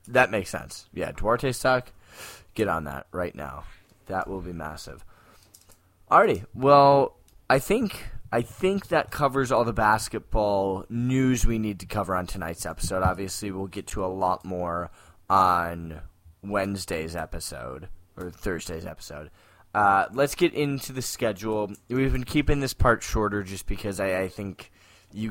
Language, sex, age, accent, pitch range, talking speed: English, male, 10-29, American, 95-120 Hz, 155 wpm